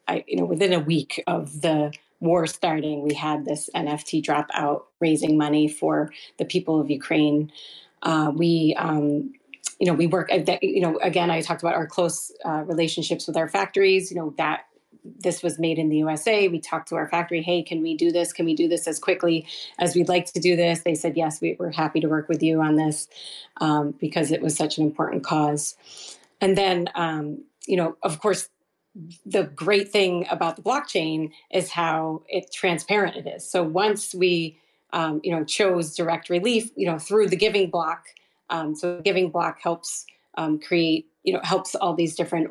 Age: 30-49